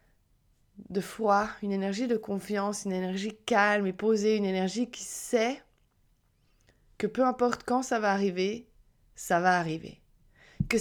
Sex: female